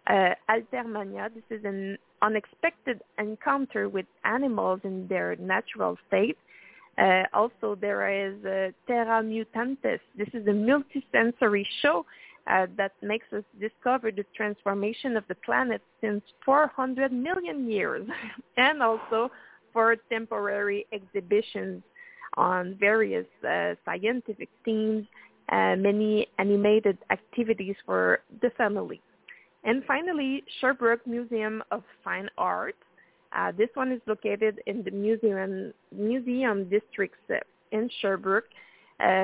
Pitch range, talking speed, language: 200-235 Hz, 115 wpm, English